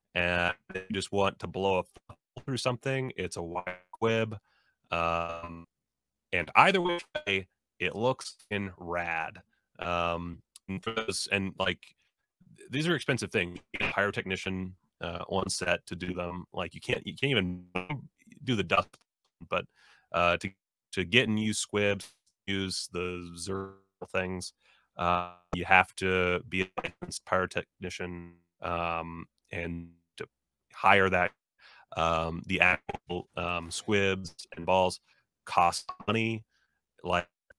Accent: American